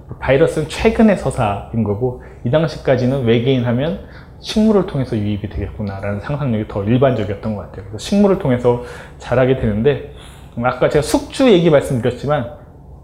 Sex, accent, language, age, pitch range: male, native, Korean, 20-39, 115-165 Hz